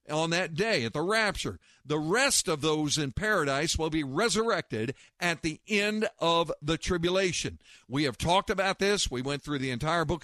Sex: male